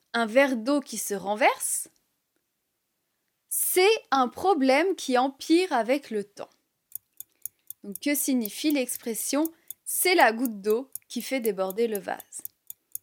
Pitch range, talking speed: 220-310 Hz, 120 wpm